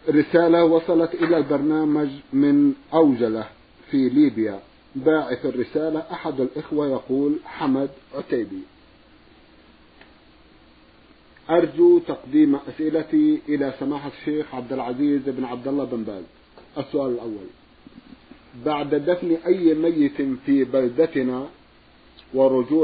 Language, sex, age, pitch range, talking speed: Arabic, male, 50-69, 135-170 Hz, 95 wpm